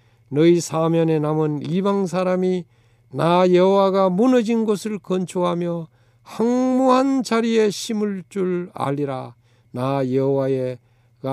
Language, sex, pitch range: Korean, male, 120-195 Hz